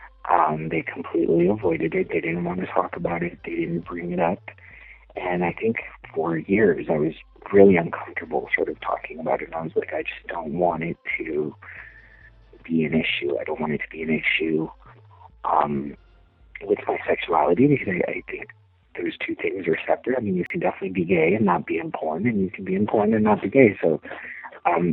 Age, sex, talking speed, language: 50-69, male, 215 wpm, English